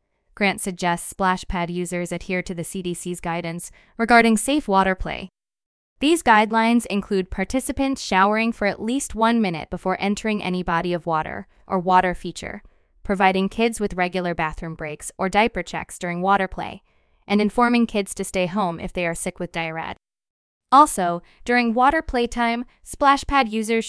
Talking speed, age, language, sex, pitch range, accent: 160 wpm, 20-39, English, female, 180-230 Hz, American